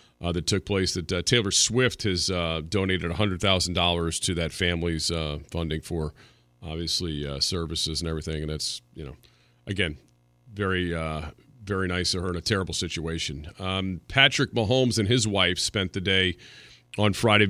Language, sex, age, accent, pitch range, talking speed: English, male, 40-59, American, 80-100 Hz, 180 wpm